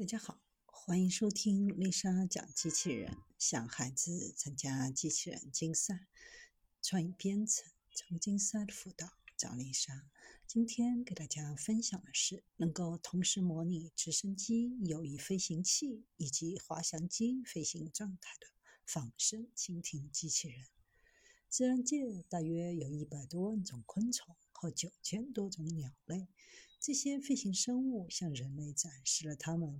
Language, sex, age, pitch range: Chinese, female, 60-79, 155-225 Hz